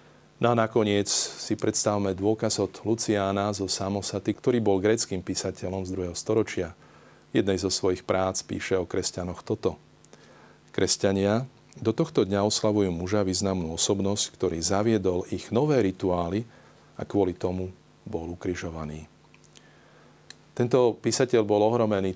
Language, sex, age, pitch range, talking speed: Slovak, male, 40-59, 95-110 Hz, 125 wpm